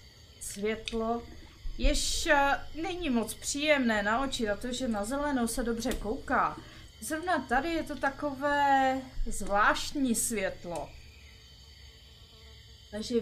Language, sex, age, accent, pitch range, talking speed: Czech, female, 20-39, native, 200-275 Hz, 90 wpm